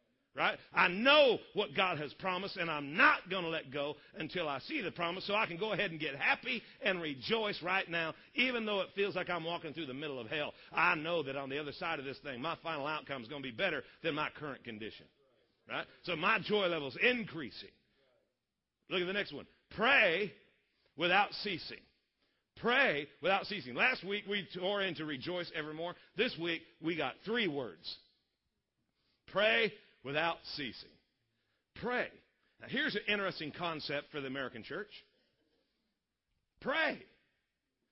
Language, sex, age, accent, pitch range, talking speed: English, male, 50-69, American, 150-205 Hz, 175 wpm